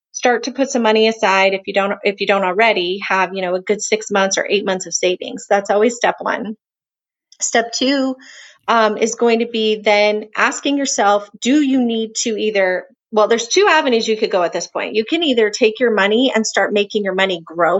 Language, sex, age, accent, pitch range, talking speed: English, female, 30-49, American, 195-235 Hz, 225 wpm